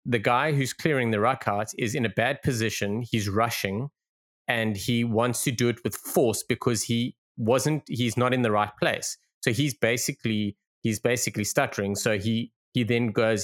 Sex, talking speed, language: male, 190 wpm, English